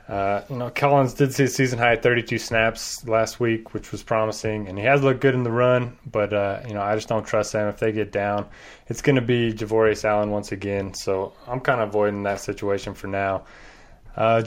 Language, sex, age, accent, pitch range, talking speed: English, male, 20-39, American, 105-125 Hz, 230 wpm